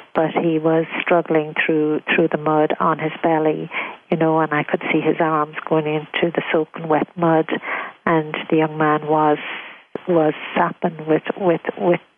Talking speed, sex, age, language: 175 wpm, female, 50-69, English